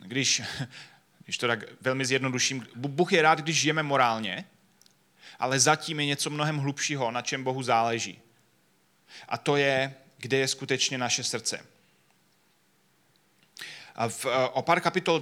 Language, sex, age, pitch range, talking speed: Czech, male, 30-49, 125-145 Hz, 140 wpm